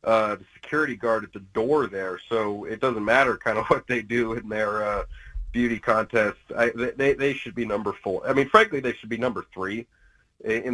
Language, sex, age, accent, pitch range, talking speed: English, male, 30-49, American, 110-130 Hz, 210 wpm